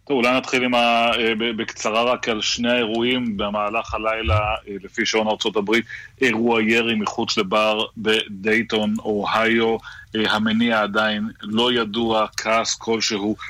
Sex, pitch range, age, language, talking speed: male, 105-115 Hz, 30-49, Hebrew, 115 wpm